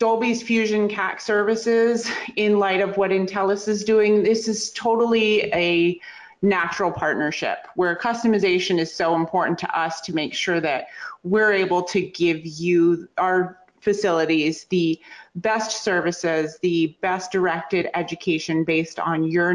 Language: English